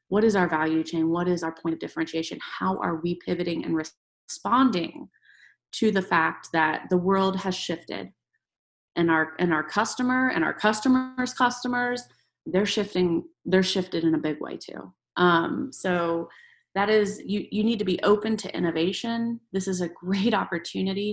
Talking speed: 170 wpm